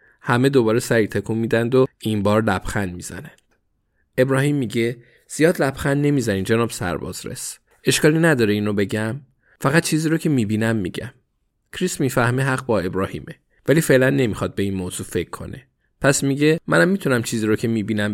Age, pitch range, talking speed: 20-39, 100-130 Hz, 160 wpm